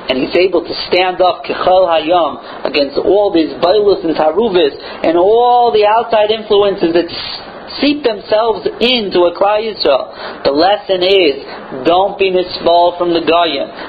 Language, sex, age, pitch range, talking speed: English, male, 40-59, 165-210 Hz, 145 wpm